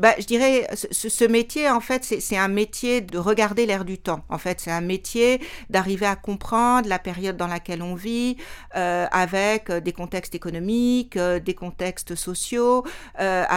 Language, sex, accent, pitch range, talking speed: Italian, female, French, 180-220 Hz, 170 wpm